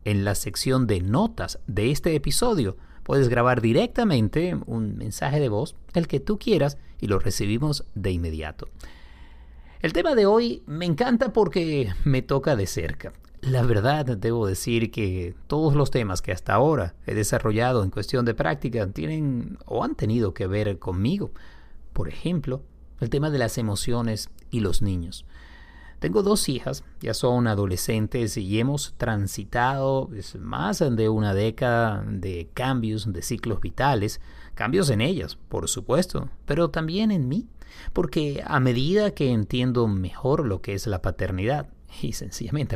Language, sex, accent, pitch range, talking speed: Spanish, male, Mexican, 100-140 Hz, 155 wpm